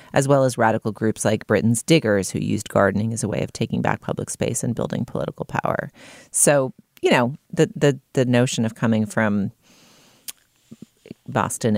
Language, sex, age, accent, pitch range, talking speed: English, female, 30-49, American, 110-135 Hz, 175 wpm